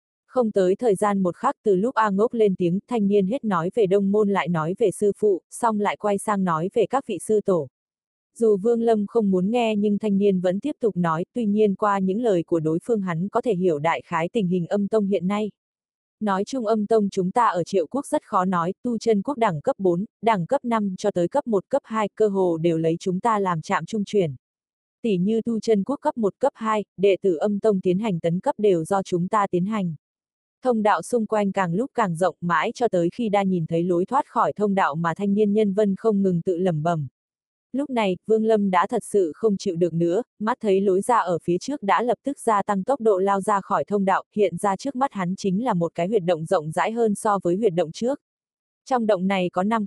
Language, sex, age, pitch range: Vietnamese, female, 20-39, 180-220 Hz